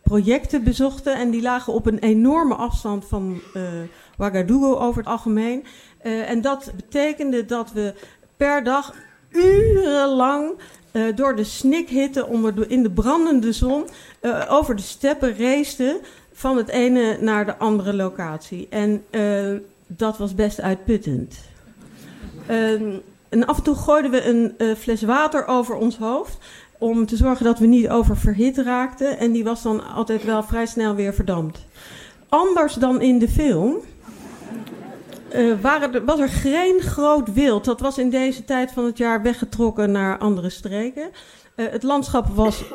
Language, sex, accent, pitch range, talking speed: Dutch, female, Dutch, 215-270 Hz, 160 wpm